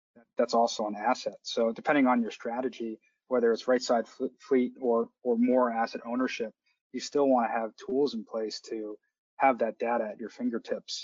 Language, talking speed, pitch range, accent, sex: English, 185 wpm, 115-130 Hz, American, male